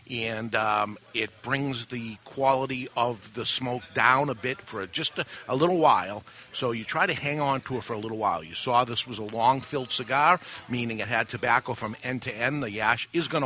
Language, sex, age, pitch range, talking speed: English, male, 50-69, 115-135 Hz, 220 wpm